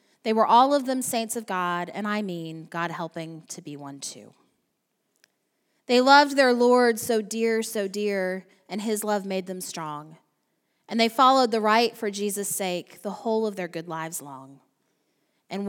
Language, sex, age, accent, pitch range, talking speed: English, female, 20-39, American, 175-225 Hz, 180 wpm